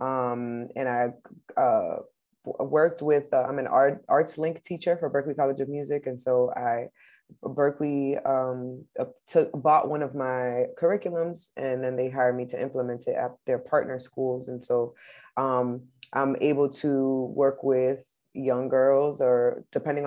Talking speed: 160 wpm